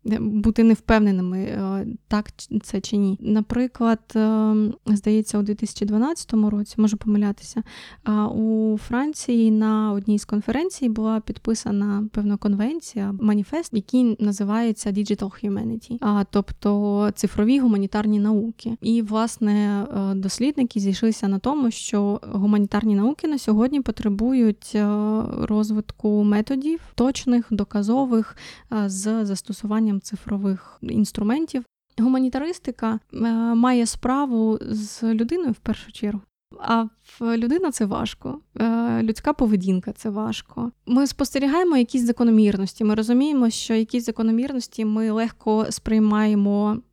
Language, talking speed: Ukrainian, 105 wpm